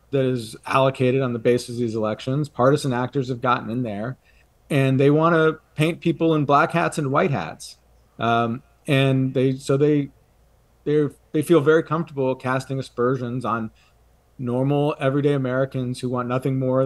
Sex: male